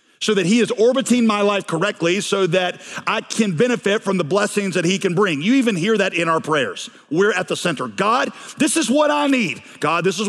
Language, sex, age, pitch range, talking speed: English, male, 40-59, 180-240 Hz, 235 wpm